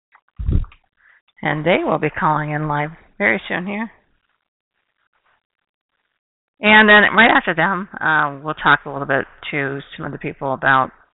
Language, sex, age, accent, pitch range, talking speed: English, female, 40-59, American, 150-185 Hz, 145 wpm